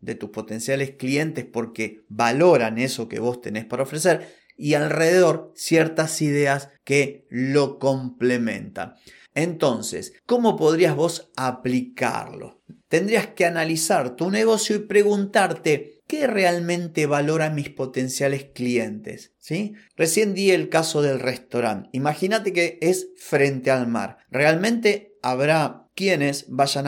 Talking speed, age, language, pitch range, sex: 120 wpm, 30-49, Spanish, 125-170 Hz, male